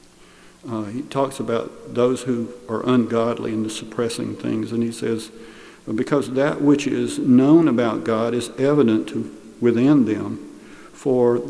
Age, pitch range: 50-69, 115-140 Hz